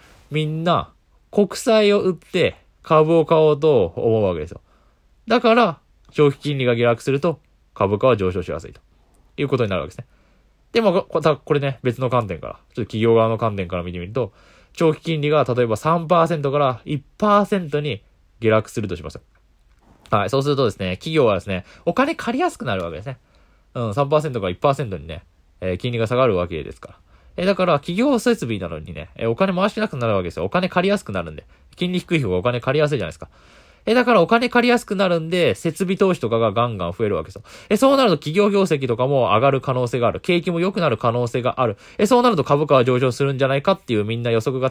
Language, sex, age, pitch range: Japanese, male, 20-39, 105-170 Hz